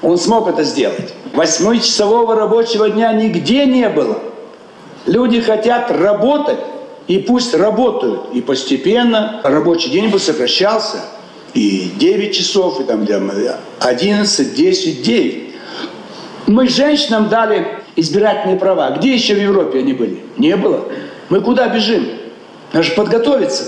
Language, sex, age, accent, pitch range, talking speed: Russian, male, 60-79, native, 200-255 Hz, 125 wpm